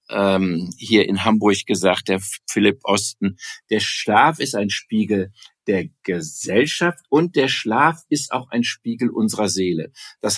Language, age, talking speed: German, 60-79, 140 wpm